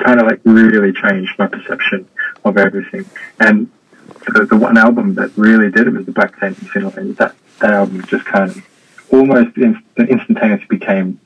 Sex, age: male, 20-39